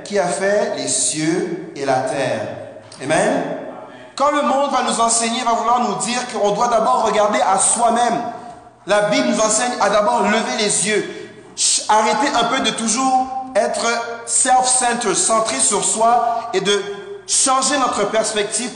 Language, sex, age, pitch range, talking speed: French, male, 40-59, 200-260 Hz, 155 wpm